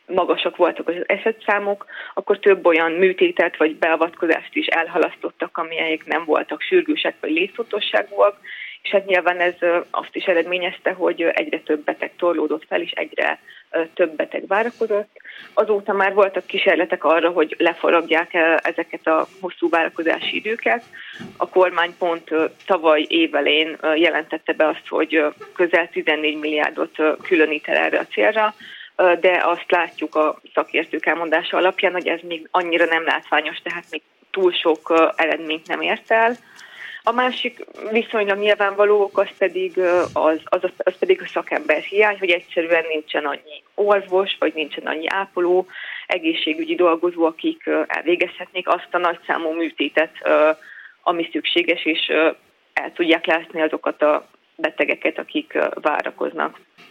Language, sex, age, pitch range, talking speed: Hungarian, female, 20-39, 160-200 Hz, 135 wpm